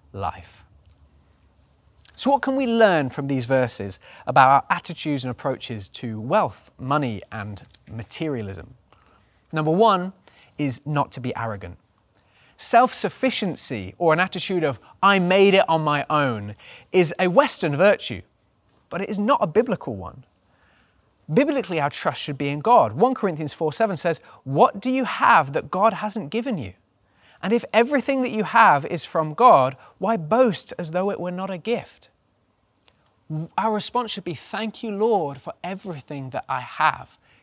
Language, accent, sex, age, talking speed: English, British, male, 20-39, 160 wpm